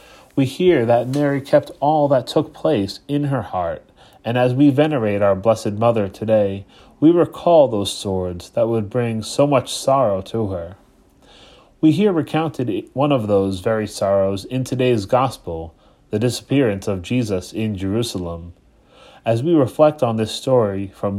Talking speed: 160 wpm